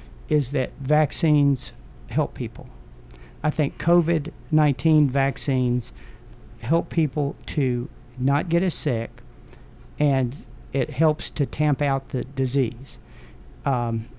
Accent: American